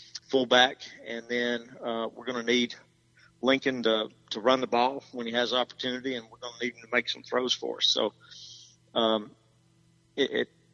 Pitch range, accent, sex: 115-135 Hz, American, male